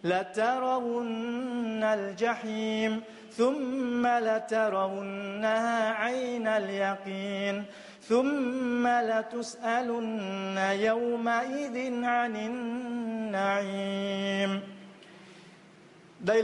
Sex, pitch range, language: male, 180-235 Hz, Vietnamese